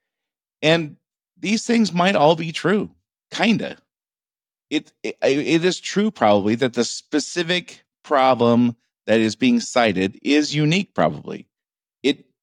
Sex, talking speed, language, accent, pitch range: male, 130 wpm, English, American, 110-150 Hz